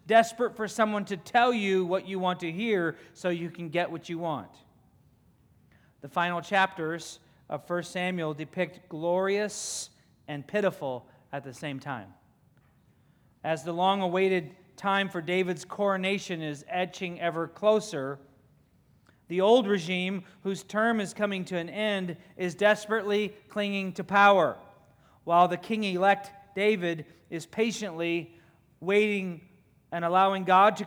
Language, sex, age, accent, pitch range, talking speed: English, male, 40-59, American, 150-190 Hz, 135 wpm